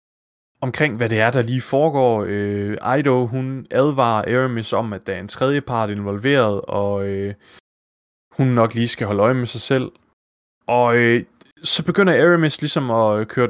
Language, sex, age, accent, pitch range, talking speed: Danish, male, 20-39, native, 105-140 Hz, 175 wpm